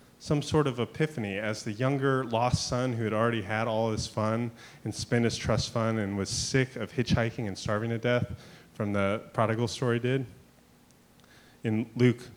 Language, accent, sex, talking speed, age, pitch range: English, American, male, 180 wpm, 30-49, 95-120 Hz